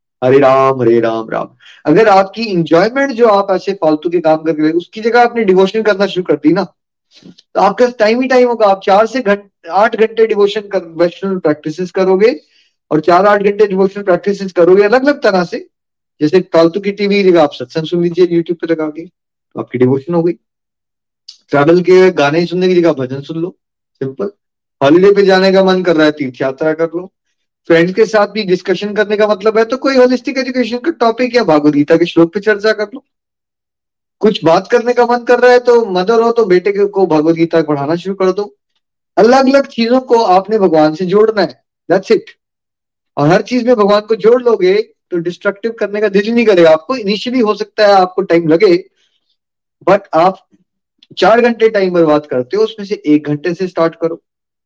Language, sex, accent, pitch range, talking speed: Hindi, male, native, 165-225 Hz, 200 wpm